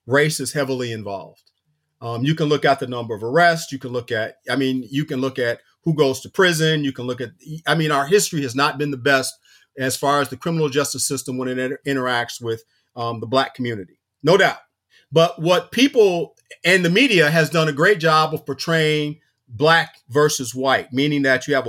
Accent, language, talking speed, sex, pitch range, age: American, English, 205 wpm, male, 130-165 Hz, 40-59